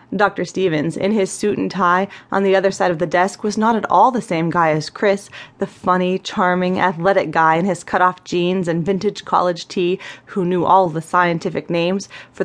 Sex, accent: female, American